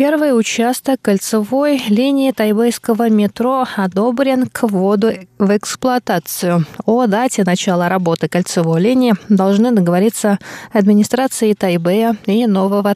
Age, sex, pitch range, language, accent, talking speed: 20-39, female, 180-230 Hz, Russian, native, 105 wpm